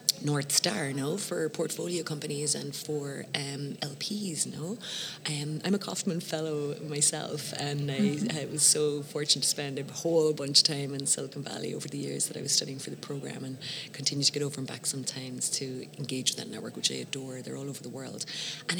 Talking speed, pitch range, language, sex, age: 205 wpm, 140-160 Hz, English, female, 30-49